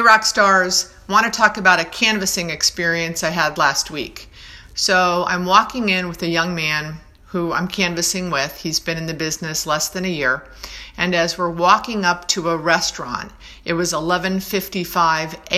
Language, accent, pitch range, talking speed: English, American, 165-185 Hz, 175 wpm